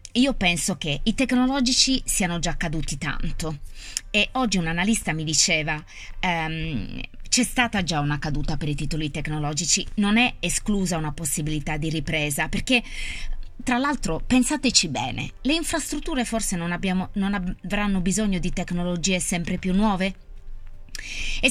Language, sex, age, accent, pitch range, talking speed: Italian, female, 20-39, native, 165-215 Hz, 135 wpm